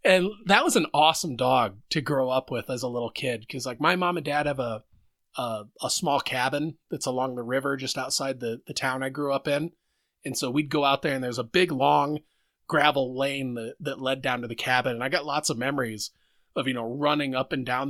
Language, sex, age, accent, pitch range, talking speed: English, male, 30-49, American, 120-145 Hz, 240 wpm